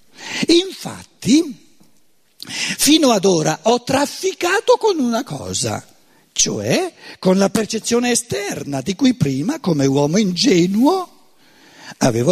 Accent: native